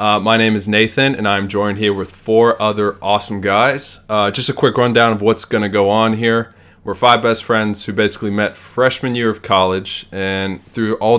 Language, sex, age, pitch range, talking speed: English, male, 20-39, 95-110 Hz, 215 wpm